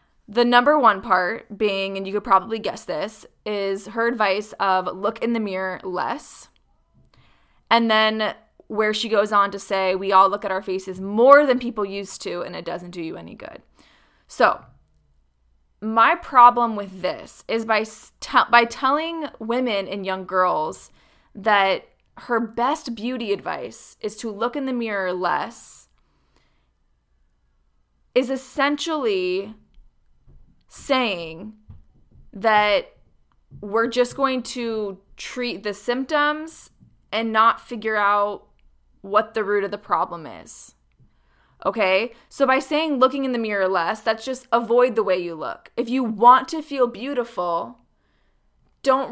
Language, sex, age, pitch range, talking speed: English, female, 20-39, 190-250 Hz, 145 wpm